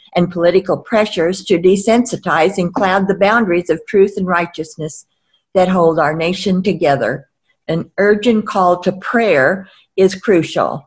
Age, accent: 50-69, American